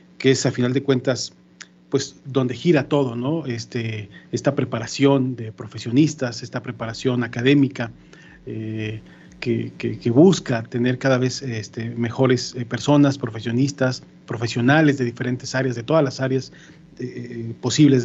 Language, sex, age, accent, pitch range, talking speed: Spanish, male, 40-59, Mexican, 125-145 Hz, 135 wpm